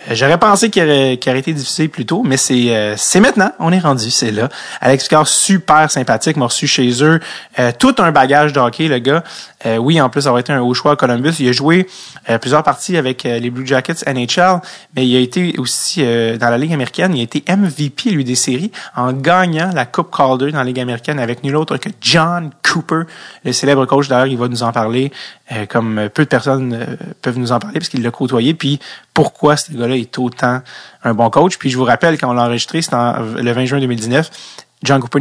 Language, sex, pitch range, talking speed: French, male, 120-155 Hz, 235 wpm